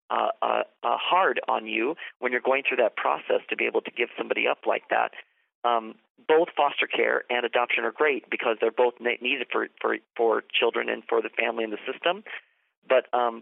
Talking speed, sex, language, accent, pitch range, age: 220 wpm, male, English, American, 115-150 Hz, 40-59